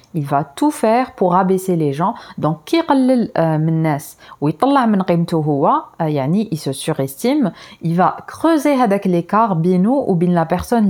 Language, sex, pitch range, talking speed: Arabic, female, 165-225 Hz, 160 wpm